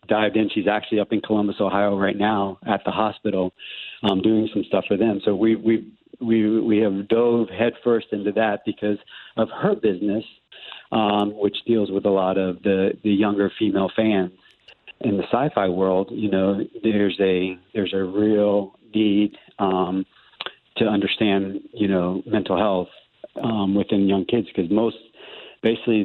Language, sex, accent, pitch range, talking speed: English, male, American, 95-110 Hz, 165 wpm